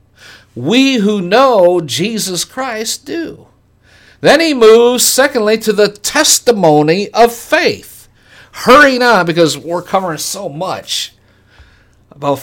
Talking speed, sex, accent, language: 110 wpm, male, American, English